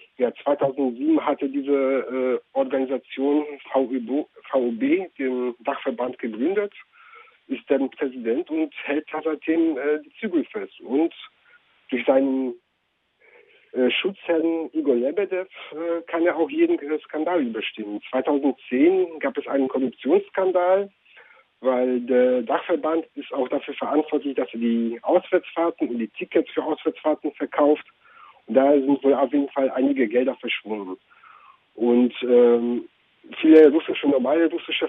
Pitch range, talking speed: 130-175 Hz, 125 wpm